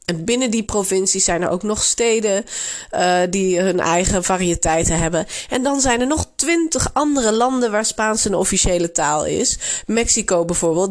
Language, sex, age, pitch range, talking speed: Dutch, female, 30-49, 170-225 Hz, 170 wpm